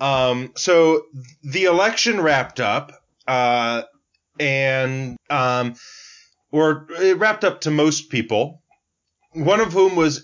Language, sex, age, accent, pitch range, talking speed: English, male, 30-49, American, 125-165 Hz, 115 wpm